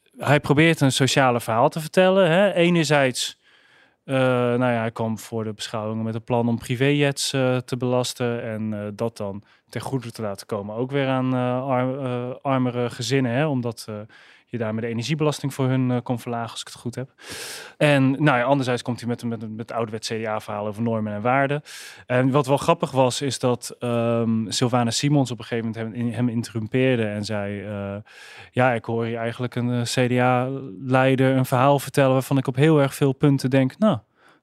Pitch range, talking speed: 120-140 Hz, 195 wpm